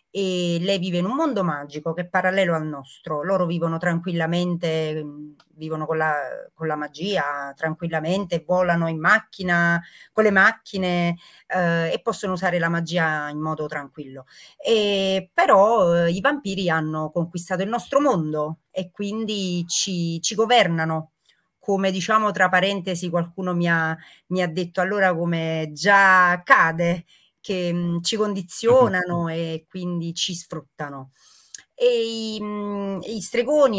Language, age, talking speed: Italian, 30-49, 135 wpm